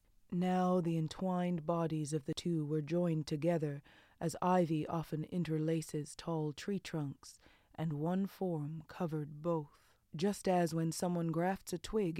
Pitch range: 155-185 Hz